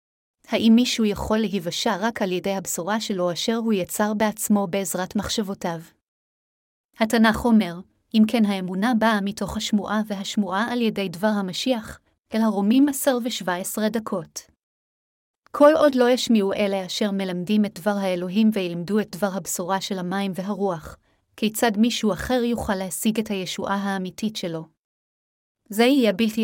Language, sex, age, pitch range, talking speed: Hebrew, female, 30-49, 195-225 Hz, 145 wpm